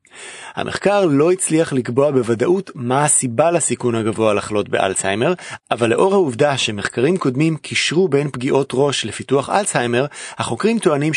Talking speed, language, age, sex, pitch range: 130 wpm, Hebrew, 30-49, male, 120-170 Hz